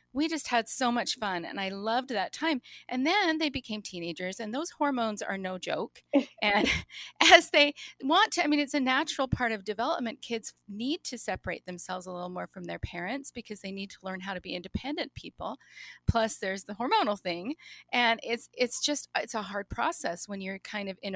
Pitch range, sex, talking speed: 190-250 Hz, female, 210 wpm